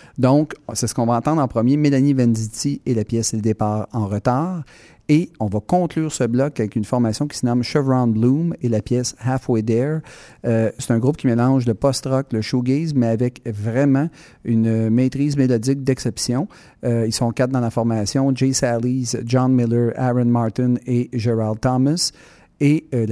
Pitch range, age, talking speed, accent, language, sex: 115-135 Hz, 40-59, 190 wpm, Canadian, French, male